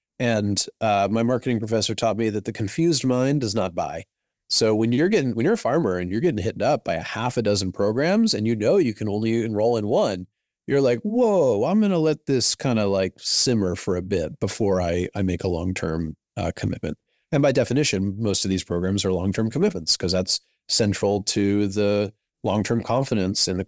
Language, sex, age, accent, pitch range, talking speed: English, male, 30-49, American, 95-130 Hz, 220 wpm